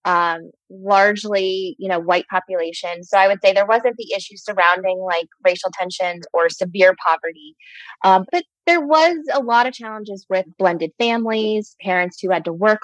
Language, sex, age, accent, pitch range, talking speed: English, female, 20-39, American, 175-210 Hz, 175 wpm